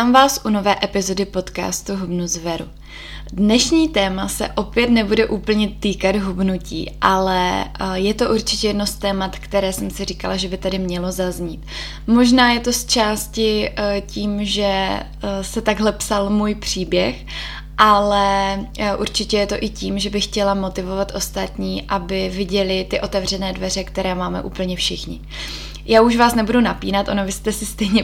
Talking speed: 160 wpm